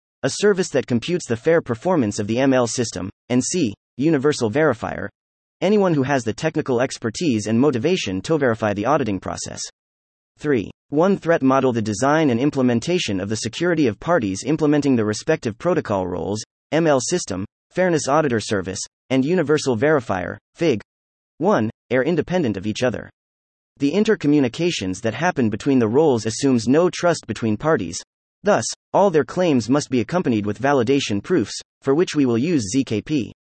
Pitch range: 105-155 Hz